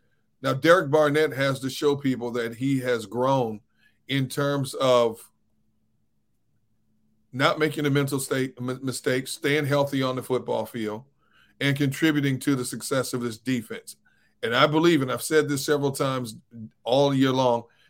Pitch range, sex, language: 125-145 Hz, male, English